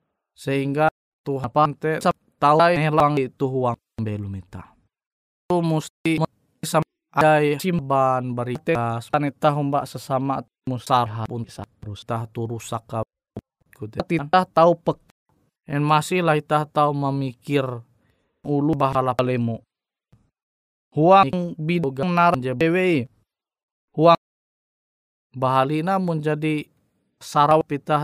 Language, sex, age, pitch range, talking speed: Indonesian, male, 20-39, 130-165 Hz, 95 wpm